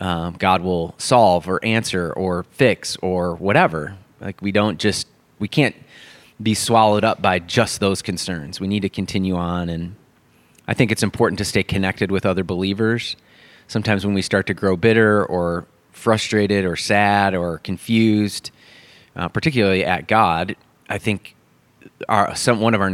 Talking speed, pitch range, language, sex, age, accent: 160 wpm, 90-105 Hz, English, male, 30-49, American